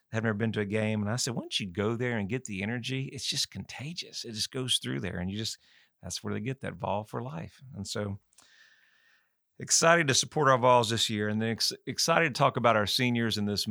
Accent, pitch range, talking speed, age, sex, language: American, 100-125 Hz, 245 wpm, 40-59, male, English